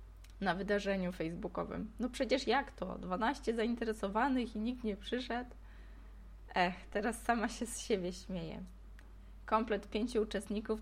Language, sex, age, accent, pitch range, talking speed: Polish, female, 20-39, native, 180-215 Hz, 130 wpm